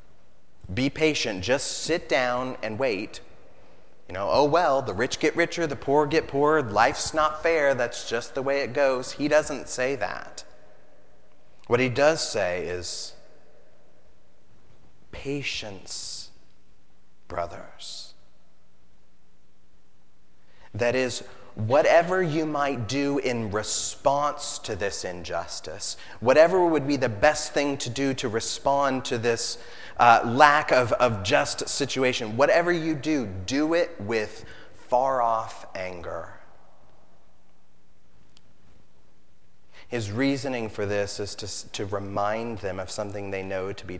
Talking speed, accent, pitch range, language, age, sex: 125 wpm, American, 95-140 Hz, English, 30-49, male